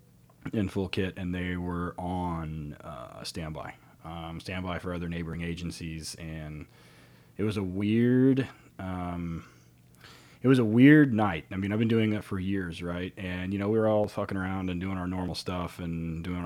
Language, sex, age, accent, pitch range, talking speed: English, male, 30-49, American, 85-105 Hz, 185 wpm